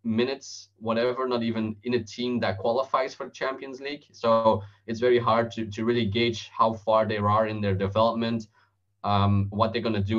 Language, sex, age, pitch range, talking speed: English, male, 20-39, 105-120 Hz, 200 wpm